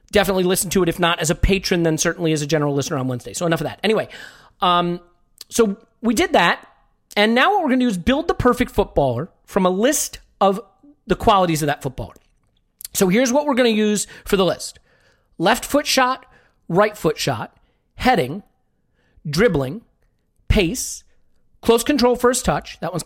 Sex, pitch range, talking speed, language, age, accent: male, 170-245 Hz, 185 wpm, English, 40-59, American